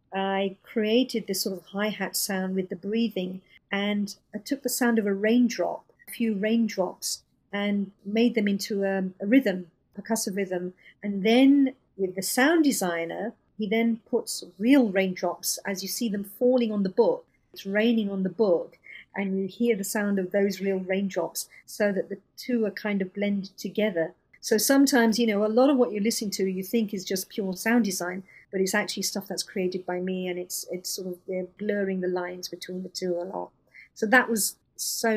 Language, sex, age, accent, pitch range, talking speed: English, female, 50-69, British, 190-225 Hz, 195 wpm